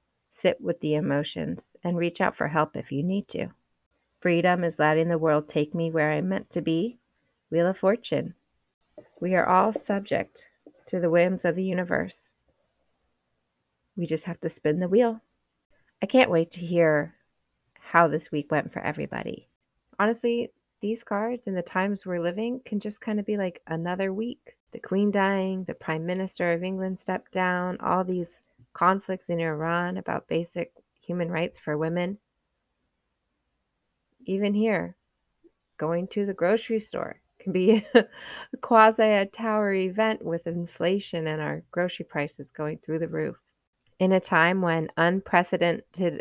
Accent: American